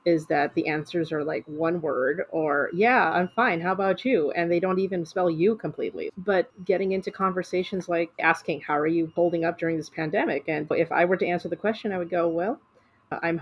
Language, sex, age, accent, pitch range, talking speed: English, female, 30-49, American, 160-195 Hz, 220 wpm